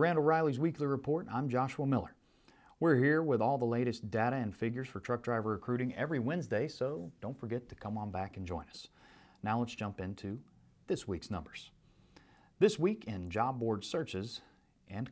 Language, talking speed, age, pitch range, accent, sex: English, 185 wpm, 40-59, 100-130 Hz, American, male